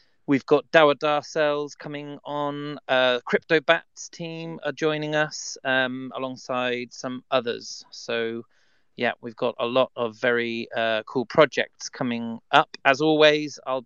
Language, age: English, 30-49